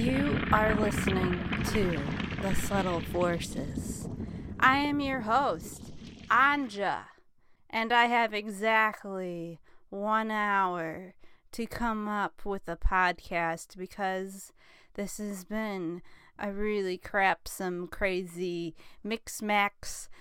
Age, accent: 30-49, American